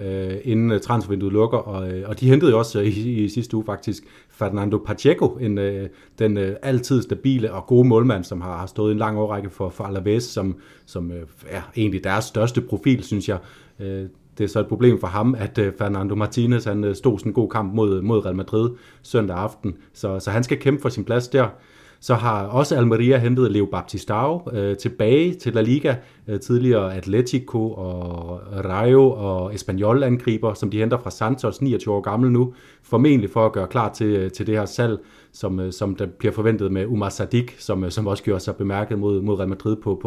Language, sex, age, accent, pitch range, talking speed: Danish, male, 30-49, native, 100-120 Hz, 185 wpm